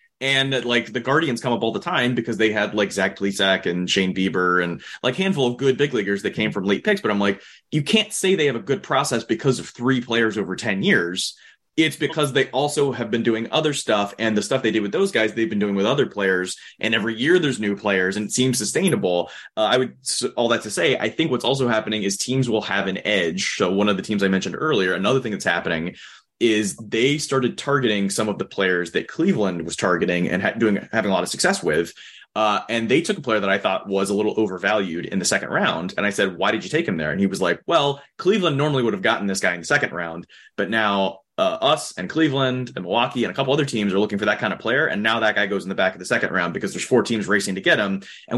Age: 20-39